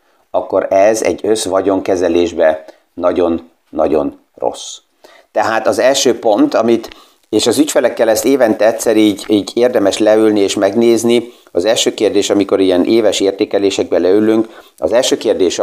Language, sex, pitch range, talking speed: Hungarian, male, 100-135 Hz, 130 wpm